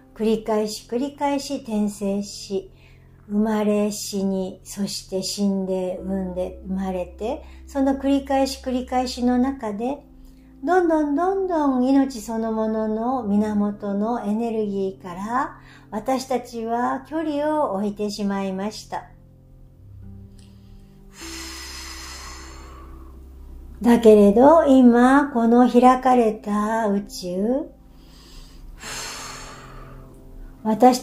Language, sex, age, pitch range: Japanese, male, 60-79, 195-255 Hz